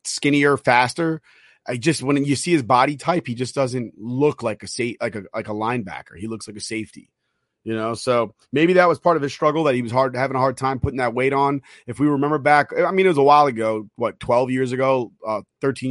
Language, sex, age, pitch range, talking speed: English, male, 30-49, 115-145 Hz, 250 wpm